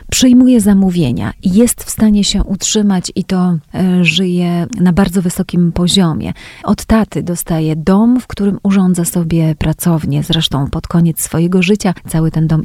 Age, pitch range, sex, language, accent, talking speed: 30-49, 175-210 Hz, female, Polish, native, 145 wpm